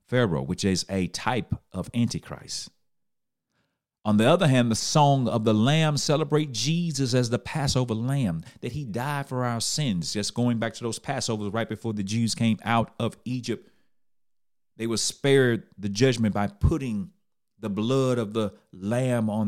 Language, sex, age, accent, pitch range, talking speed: English, male, 40-59, American, 105-130 Hz, 170 wpm